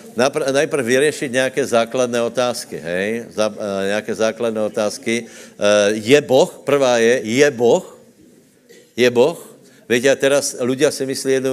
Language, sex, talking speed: Slovak, male, 130 wpm